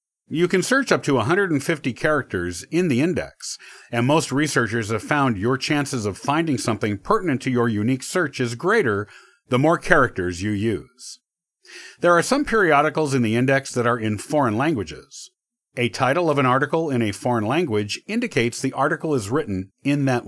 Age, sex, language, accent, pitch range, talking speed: 50-69, male, English, American, 120-170 Hz, 180 wpm